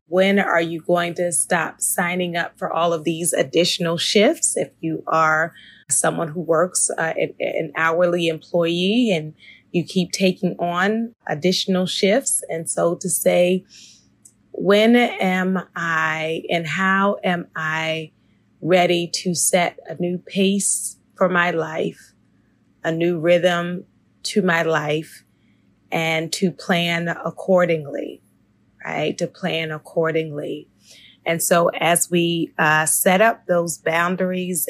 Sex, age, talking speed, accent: female, 20-39, 130 wpm, American